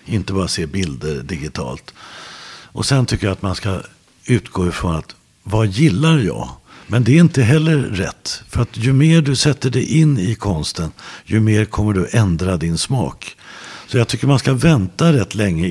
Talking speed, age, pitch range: 185 wpm, 60-79, 95-130 Hz